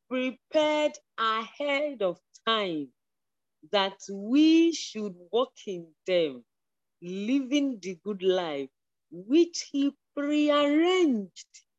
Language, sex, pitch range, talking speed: English, female, 175-275 Hz, 85 wpm